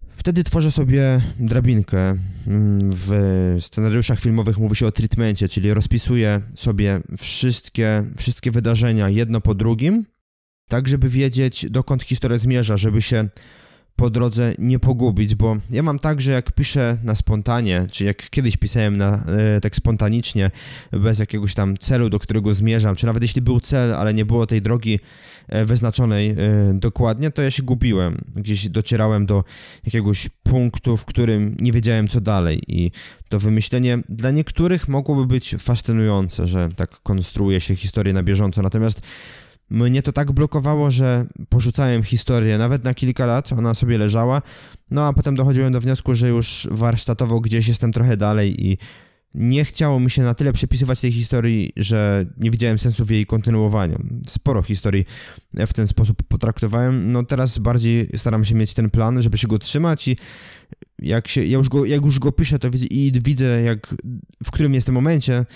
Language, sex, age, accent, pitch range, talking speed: Polish, male, 20-39, native, 105-125 Hz, 165 wpm